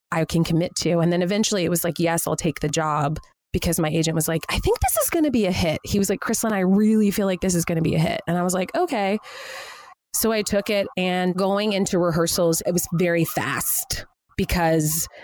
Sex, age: female, 20-39